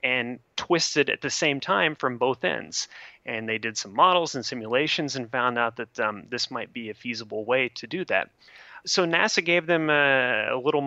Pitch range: 110-140 Hz